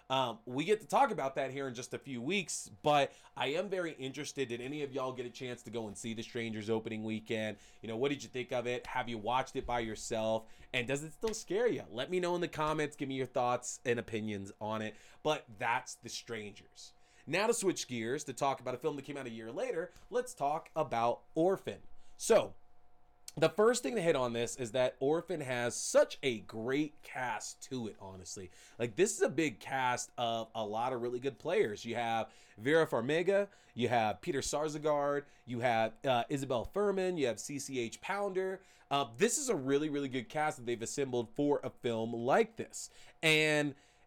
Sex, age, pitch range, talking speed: male, 20-39, 115-155 Hz, 210 wpm